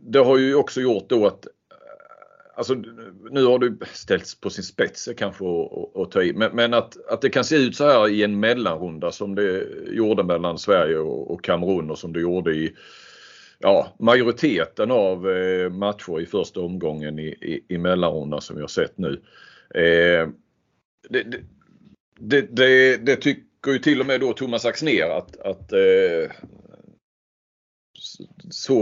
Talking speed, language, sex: 155 wpm, Swedish, male